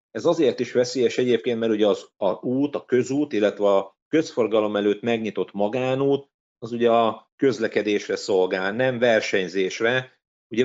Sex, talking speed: male, 145 wpm